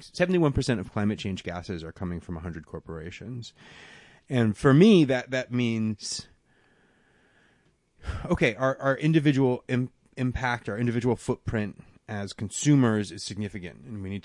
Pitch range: 90-120 Hz